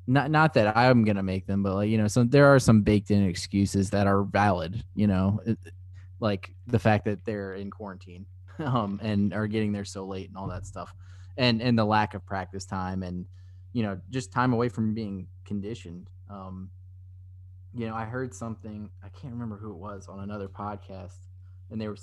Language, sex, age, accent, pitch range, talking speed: English, male, 20-39, American, 95-115 Hz, 205 wpm